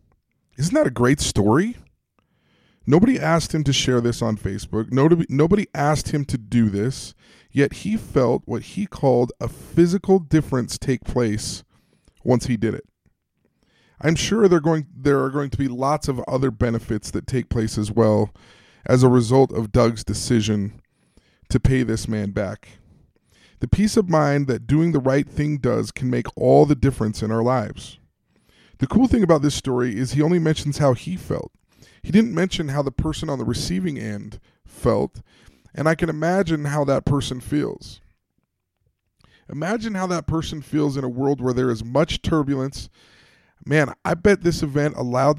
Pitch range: 115-155 Hz